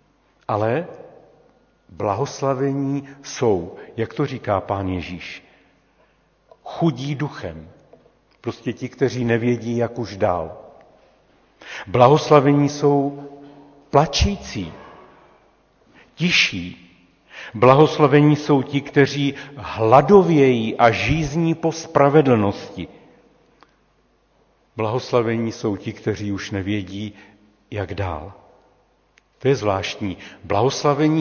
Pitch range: 110-145 Hz